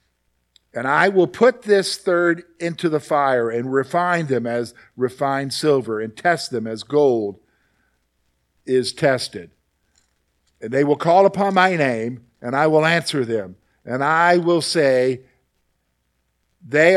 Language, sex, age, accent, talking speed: English, male, 50-69, American, 140 wpm